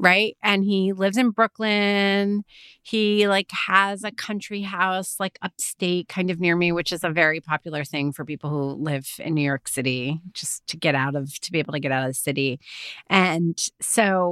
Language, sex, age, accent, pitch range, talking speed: English, female, 30-49, American, 160-210 Hz, 200 wpm